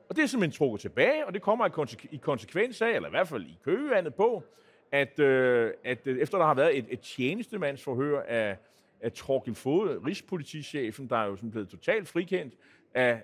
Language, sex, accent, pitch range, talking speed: Danish, male, native, 135-185 Hz, 195 wpm